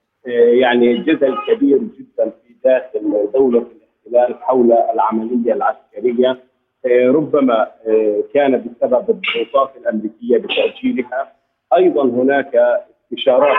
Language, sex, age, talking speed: Arabic, male, 40-59, 90 wpm